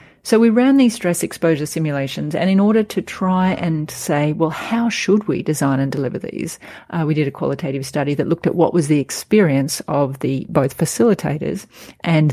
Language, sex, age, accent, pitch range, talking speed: English, female, 40-59, Australian, 145-175 Hz, 195 wpm